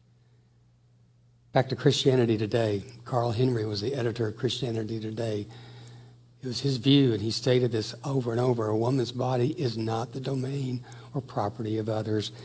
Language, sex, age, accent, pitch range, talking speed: English, male, 60-79, American, 115-125 Hz, 165 wpm